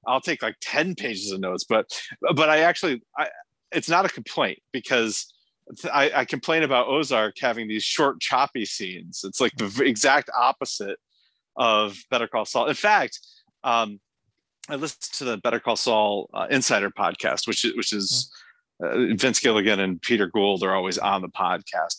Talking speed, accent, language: 170 wpm, American, English